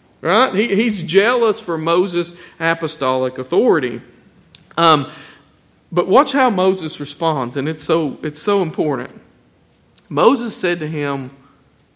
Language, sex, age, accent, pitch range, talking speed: English, male, 40-59, American, 150-205 Hz, 120 wpm